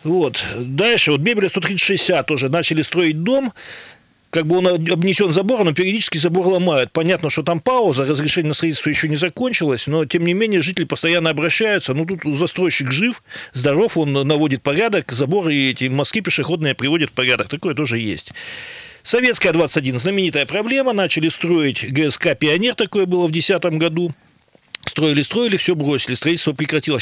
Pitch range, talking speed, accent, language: 140-185 Hz, 160 wpm, native, Russian